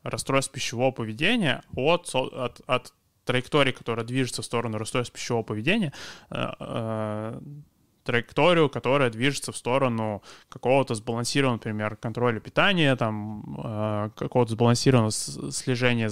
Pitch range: 115-140 Hz